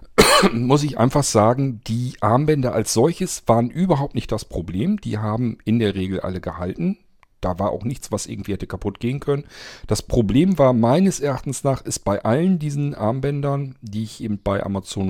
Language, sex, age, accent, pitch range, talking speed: German, male, 40-59, German, 100-140 Hz, 185 wpm